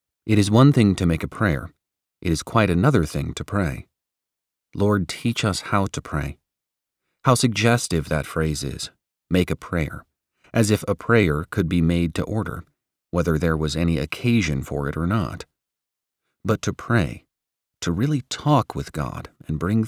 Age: 30-49